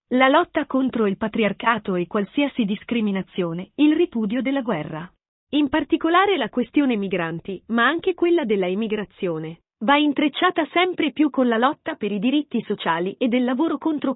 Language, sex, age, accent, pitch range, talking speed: Italian, female, 40-59, native, 220-305 Hz, 155 wpm